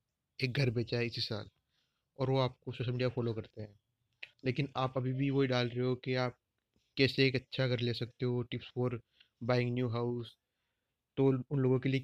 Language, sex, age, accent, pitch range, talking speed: Hindi, male, 30-49, native, 110-125 Hz, 205 wpm